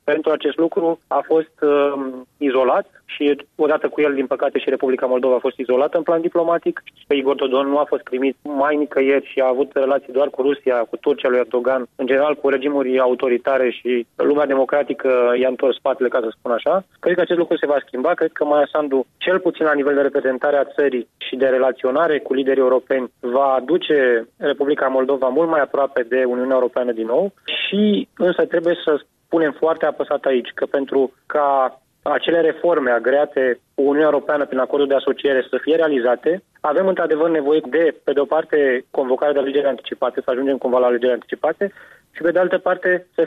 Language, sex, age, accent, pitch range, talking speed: Romanian, male, 20-39, native, 130-160 Hz, 195 wpm